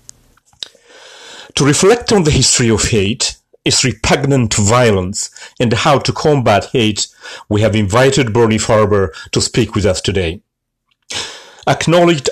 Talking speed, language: 125 wpm, Amharic